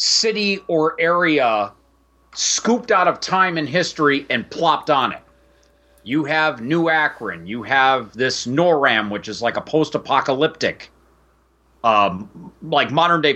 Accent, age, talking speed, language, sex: American, 40-59, 130 wpm, English, male